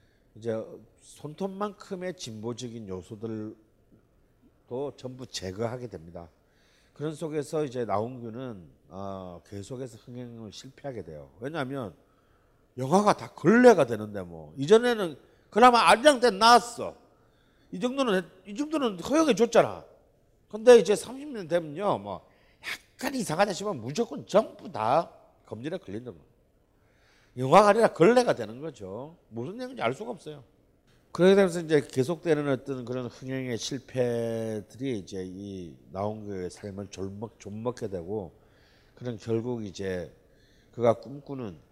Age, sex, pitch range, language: 40-59, male, 100-145 Hz, Korean